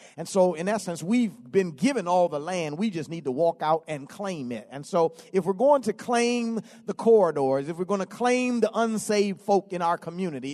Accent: American